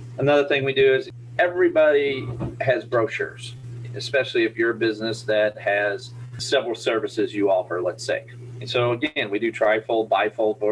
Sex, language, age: male, English, 30-49